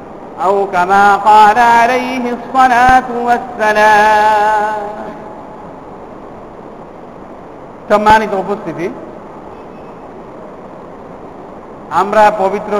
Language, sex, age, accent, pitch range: Bengali, male, 50-69, native, 205-240 Hz